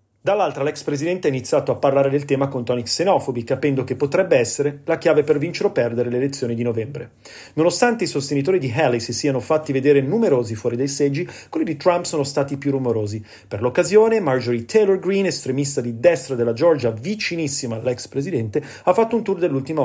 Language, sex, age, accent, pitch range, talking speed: Italian, male, 30-49, native, 125-170 Hz, 195 wpm